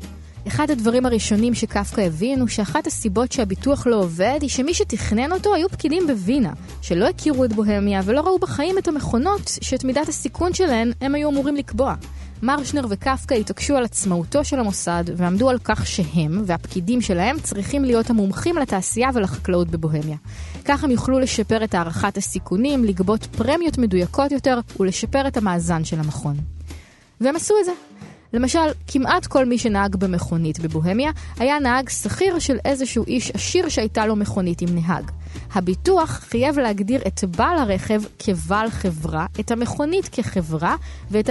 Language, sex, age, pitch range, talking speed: Hebrew, female, 20-39, 190-270 Hz, 150 wpm